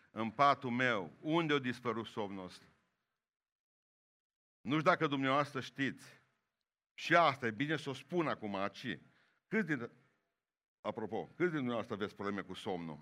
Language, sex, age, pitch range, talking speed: Romanian, male, 50-69, 110-140 Hz, 145 wpm